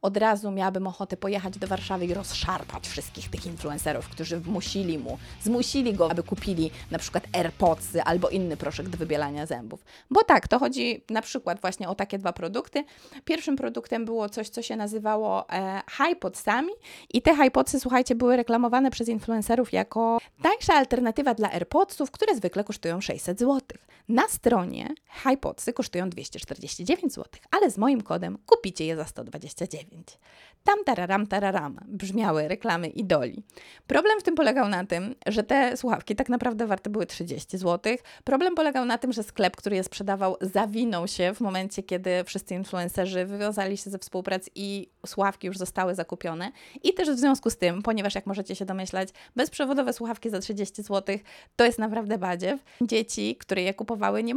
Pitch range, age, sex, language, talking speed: 185-245 Hz, 20-39, female, Polish, 170 wpm